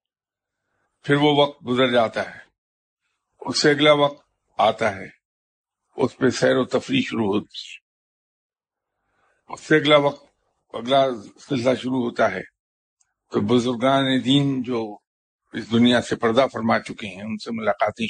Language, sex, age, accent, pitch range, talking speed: English, male, 50-69, Indian, 125-165 Hz, 135 wpm